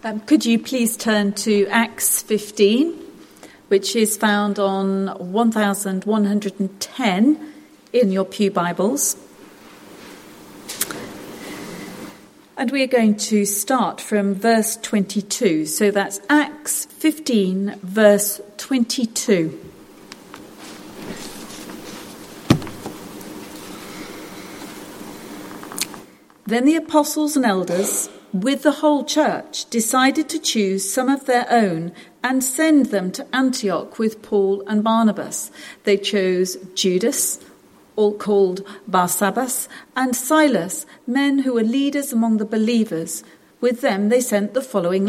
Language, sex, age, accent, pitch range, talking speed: English, female, 40-59, British, 195-255 Hz, 105 wpm